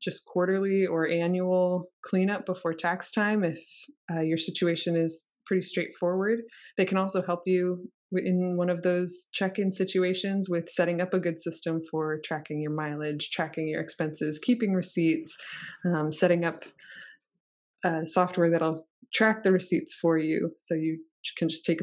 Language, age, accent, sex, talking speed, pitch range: English, 20-39, American, female, 155 wpm, 165-195 Hz